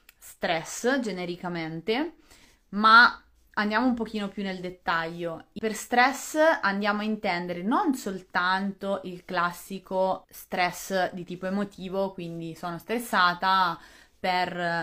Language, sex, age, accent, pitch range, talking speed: Italian, female, 20-39, native, 180-215 Hz, 105 wpm